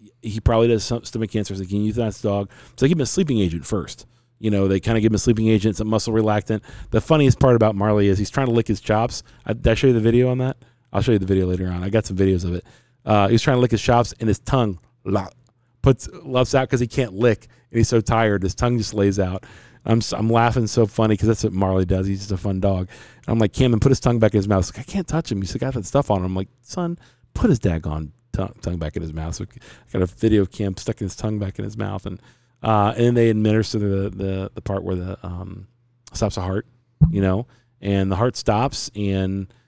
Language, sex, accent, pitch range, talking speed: English, male, American, 100-120 Hz, 275 wpm